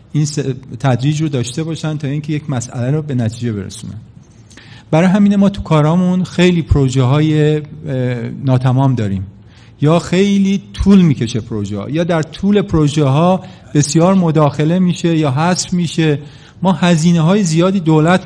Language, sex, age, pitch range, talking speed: Persian, male, 40-59, 125-180 Hz, 145 wpm